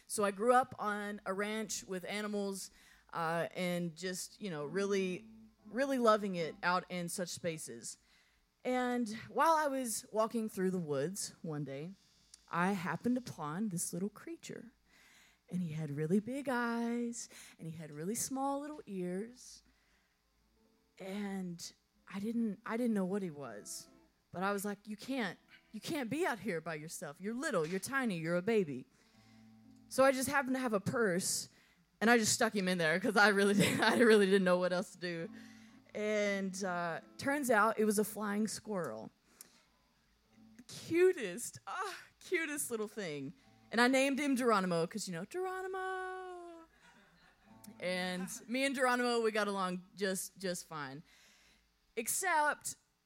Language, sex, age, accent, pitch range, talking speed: English, female, 20-39, American, 180-235 Hz, 160 wpm